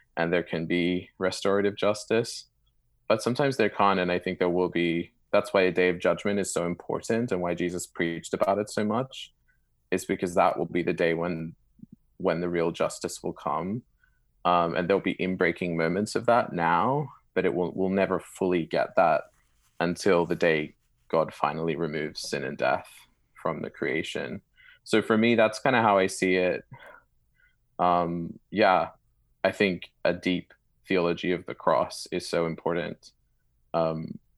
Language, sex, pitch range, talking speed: English, male, 85-95 Hz, 175 wpm